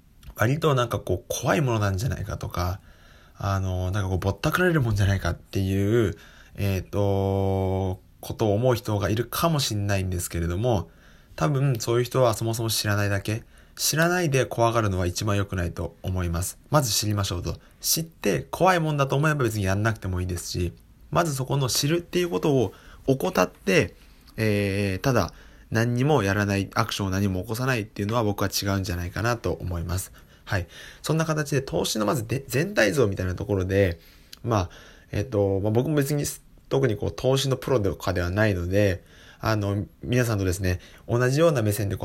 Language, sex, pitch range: Japanese, male, 90-120 Hz